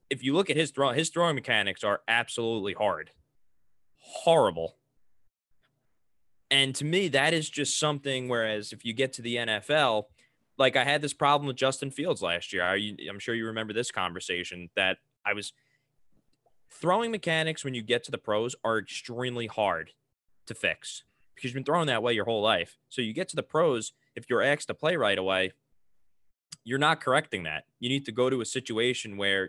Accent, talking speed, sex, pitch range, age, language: American, 190 wpm, male, 105-140 Hz, 20-39, English